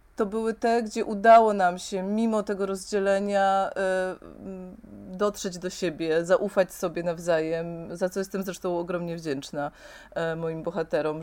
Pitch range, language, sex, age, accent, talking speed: 175-210 Hz, Polish, female, 30-49, native, 130 wpm